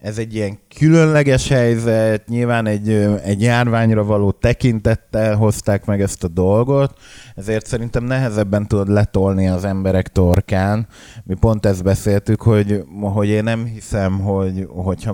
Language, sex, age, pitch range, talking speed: Hungarian, male, 20-39, 95-105 Hz, 140 wpm